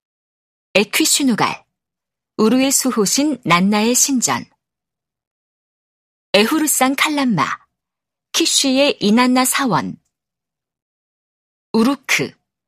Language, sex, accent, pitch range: Korean, female, native, 210-285 Hz